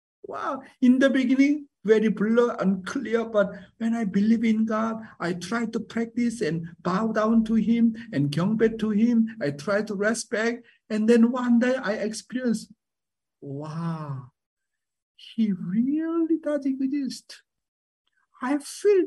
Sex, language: male, English